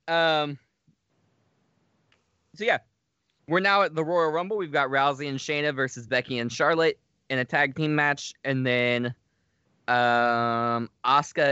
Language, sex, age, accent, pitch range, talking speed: English, male, 20-39, American, 115-140 Hz, 140 wpm